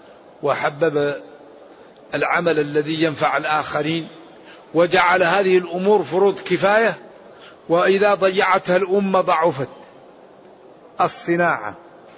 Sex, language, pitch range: male, Arabic, 160-195 Hz